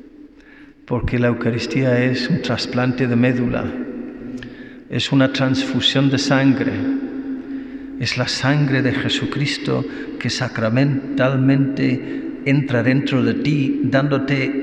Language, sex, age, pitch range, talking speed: Spanish, male, 50-69, 125-200 Hz, 105 wpm